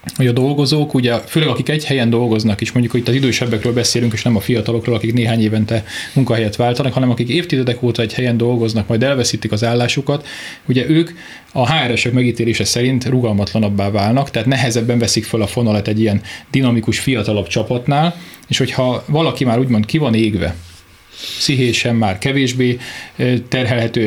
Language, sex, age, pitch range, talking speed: Hungarian, male, 30-49, 115-130 Hz, 165 wpm